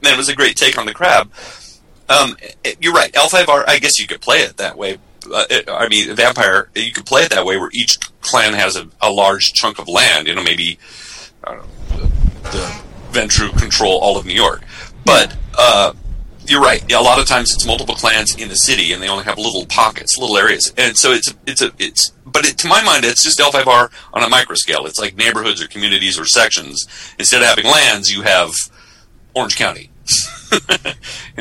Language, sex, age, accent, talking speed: English, male, 40-59, American, 220 wpm